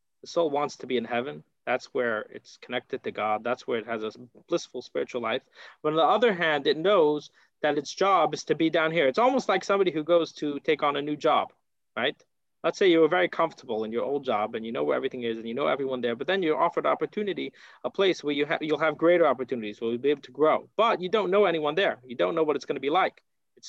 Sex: male